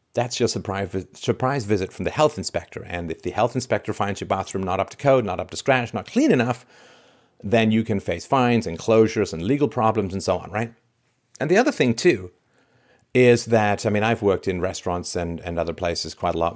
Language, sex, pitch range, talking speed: English, male, 90-115 Hz, 220 wpm